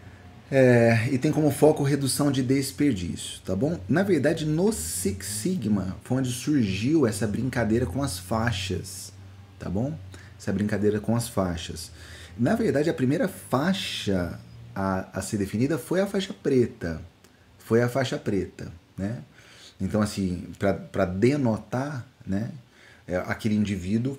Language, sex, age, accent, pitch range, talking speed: Portuguese, male, 30-49, Brazilian, 100-125 Hz, 140 wpm